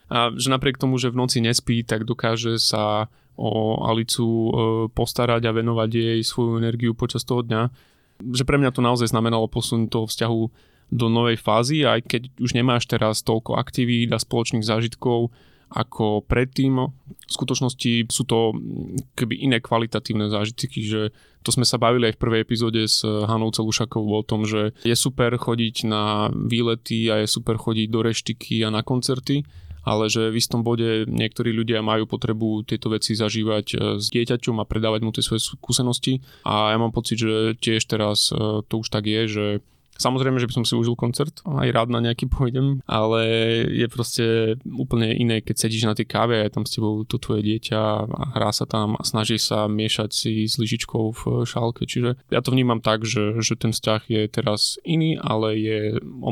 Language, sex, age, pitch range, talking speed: Slovak, male, 20-39, 110-120 Hz, 180 wpm